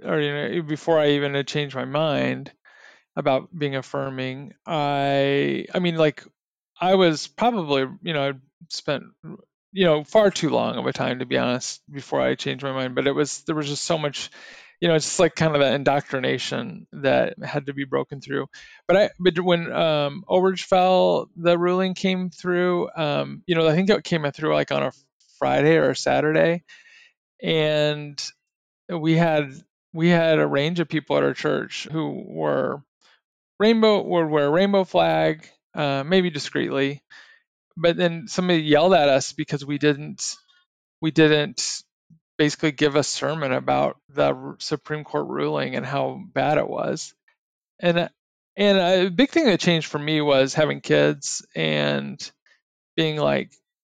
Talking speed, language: 170 wpm, English